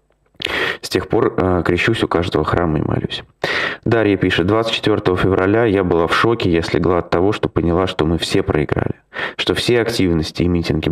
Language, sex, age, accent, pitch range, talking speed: Russian, male, 20-39, native, 80-105 Hz, 180 wpm